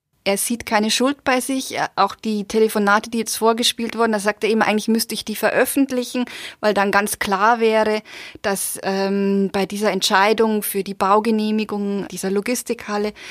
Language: German